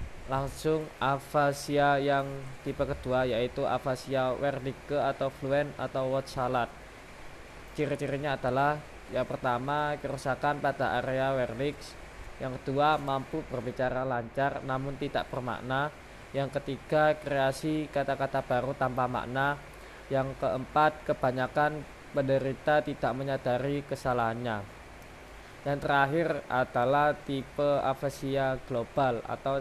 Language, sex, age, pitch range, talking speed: Indonesian, male, 20-39, 130-145 Hz, 100 wpm